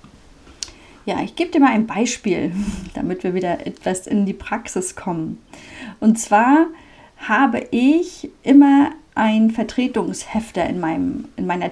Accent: German